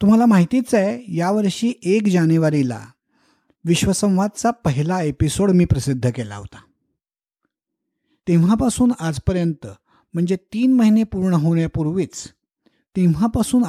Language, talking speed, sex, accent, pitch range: Marathi, 90 wpm, male, native, 145-200 Hz